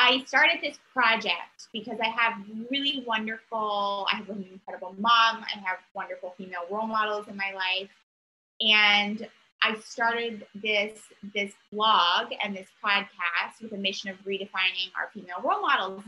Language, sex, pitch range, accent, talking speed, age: English, female, 190-230 Hz, American, 155 wpm, 20-39